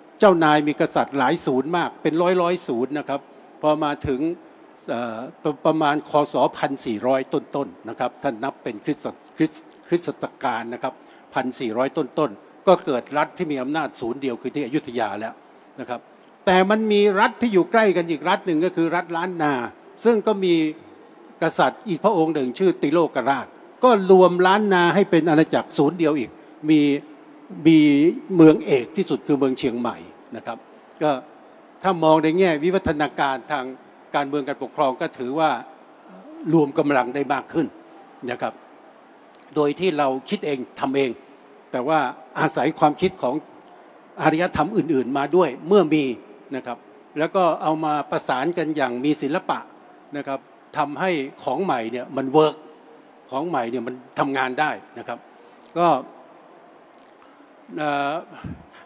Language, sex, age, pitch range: English, male, 60-79, 140-180 Hz